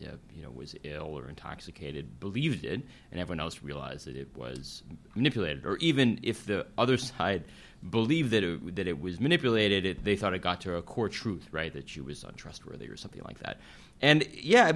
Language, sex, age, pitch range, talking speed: English, male, 30-49, 80-105 Hz, 200 wpm